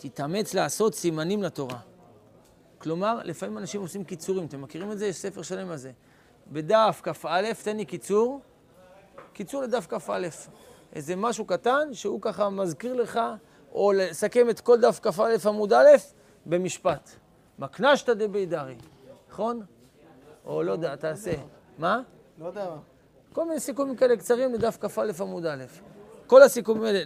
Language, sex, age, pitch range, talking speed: Hebrew, male, 30-49, 165-220 Hz, 145 wpm